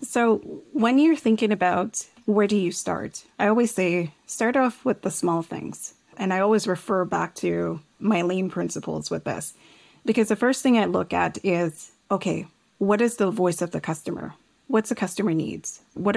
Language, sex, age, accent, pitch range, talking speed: English, female, 30-49, American, 175-220 Hz, 185 wpm